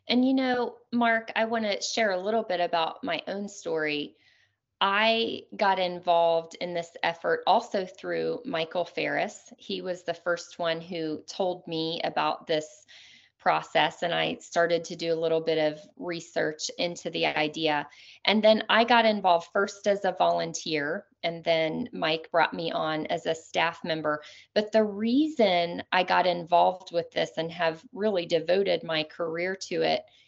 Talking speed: 165 wpm